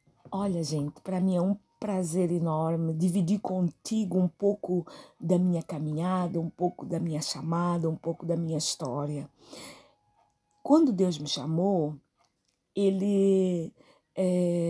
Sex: female